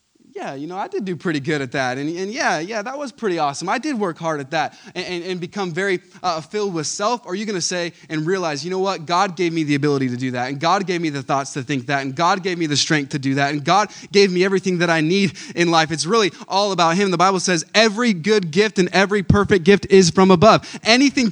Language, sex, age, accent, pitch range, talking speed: English, male, 20-39, American, 155-205 Hz, 280 wpm